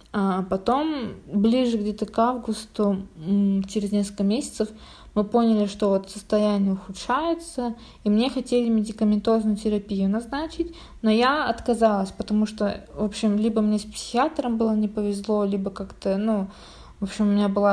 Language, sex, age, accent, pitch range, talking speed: Russian, female, 20-39, native, 195-220 Hz, 140 wpm